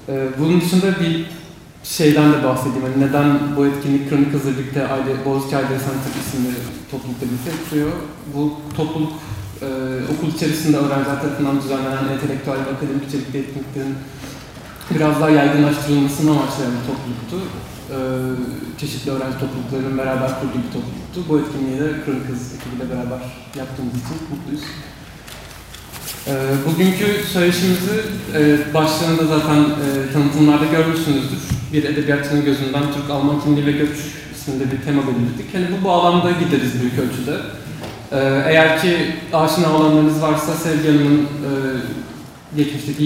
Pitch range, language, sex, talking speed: 135-155 Hz, Turkish, male, 120 wpm